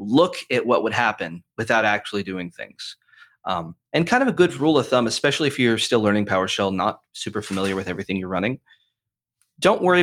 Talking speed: 195 wpm